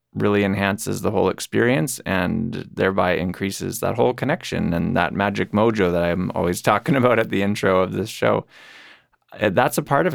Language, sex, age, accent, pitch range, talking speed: English, male, 20-39, American, 90-110 Hz, 175 wpm